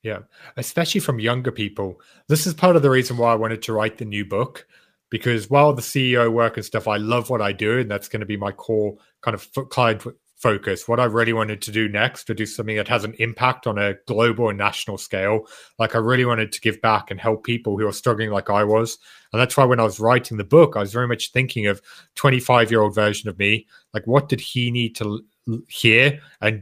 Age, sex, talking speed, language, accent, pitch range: 30-49, male, 235 wpm, English, British, 105-125 Hz